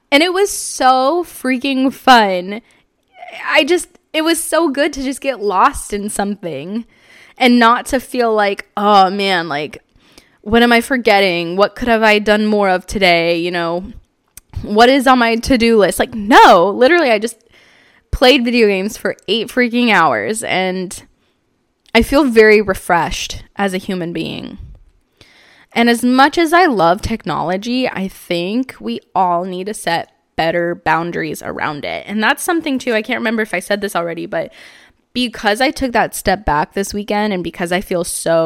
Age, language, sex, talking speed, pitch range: 10-29, English, female, 175 wpm, 190-260 Hz